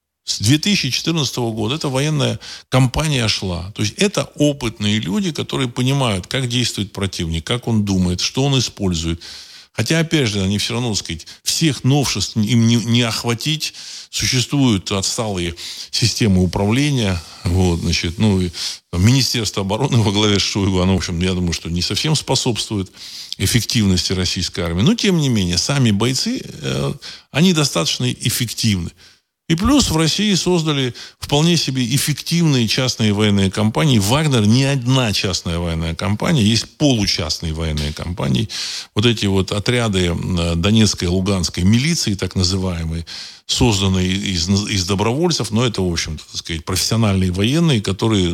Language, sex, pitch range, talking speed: Russian, male, 95-130 Hz, 145 wpm